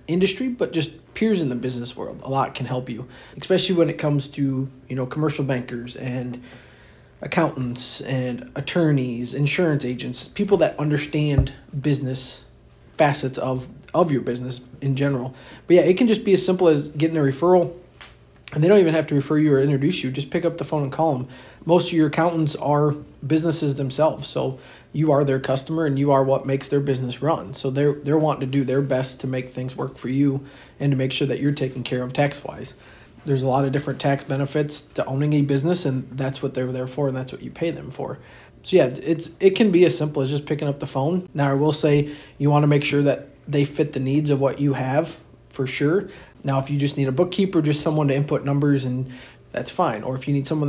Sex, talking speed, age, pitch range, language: male, 225 wpm, 40-59, 130-155 Hz, English